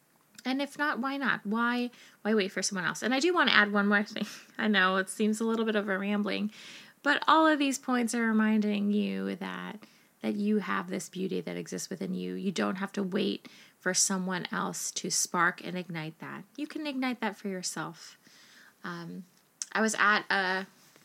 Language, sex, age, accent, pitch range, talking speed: English, female, 20-39, American, 190-245 Hz, 205 wpm